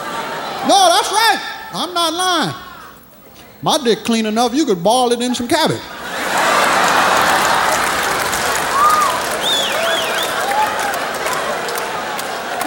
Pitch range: 240-350 Hz